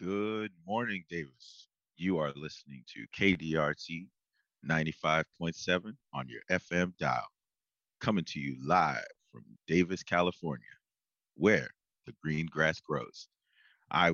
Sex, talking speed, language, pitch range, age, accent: male, 110 wpm, English, 80-90 Hz, 30-49, American